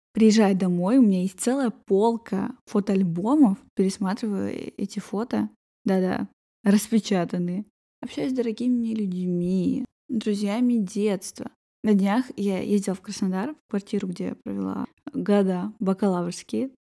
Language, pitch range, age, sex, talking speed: Russian, 190-235 Hz, 10-29, female, 115 wpm